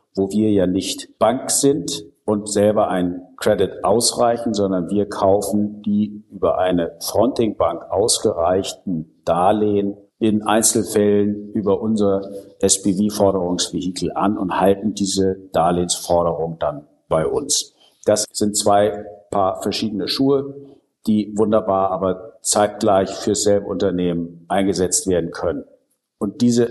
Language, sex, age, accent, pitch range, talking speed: German, male, 50-69, German, 95-110 Hz, 115 wpm